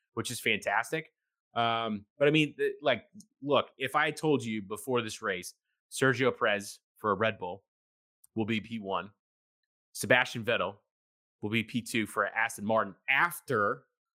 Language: English